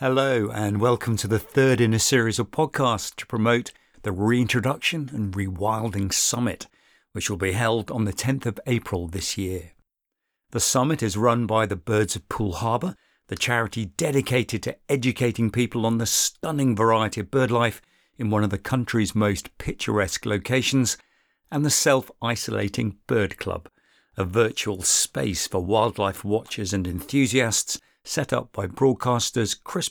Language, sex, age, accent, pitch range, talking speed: English, male, 50-69, British, 100-120 Hz, 155 wpm